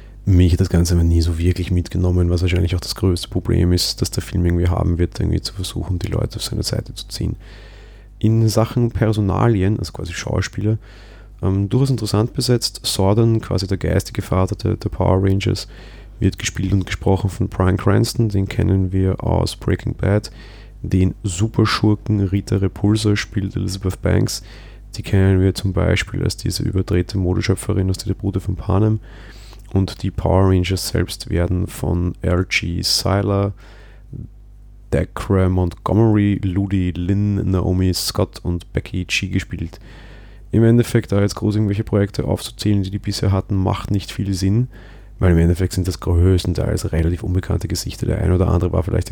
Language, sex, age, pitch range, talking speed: German, male, 30-49, 90-110 Hz, 165 wpm